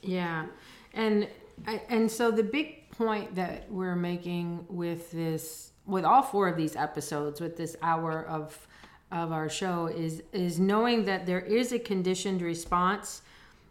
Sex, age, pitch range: female, 40-59, 165-195 Hz